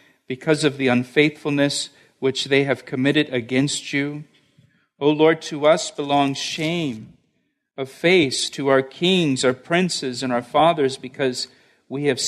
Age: 50-69